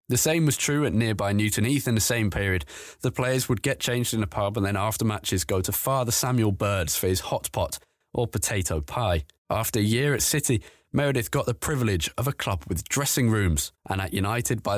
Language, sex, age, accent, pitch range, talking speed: English, male, 20-39, British, 95-125 Hz, 225 wpm